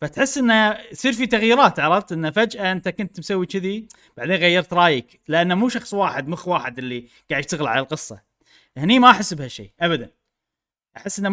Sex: male